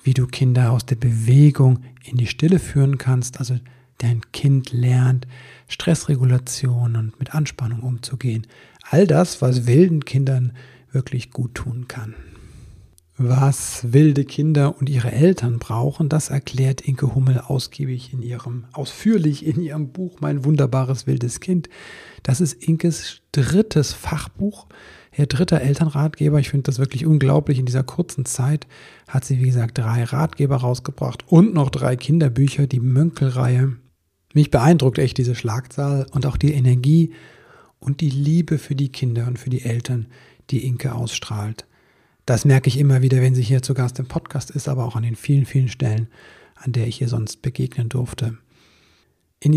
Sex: male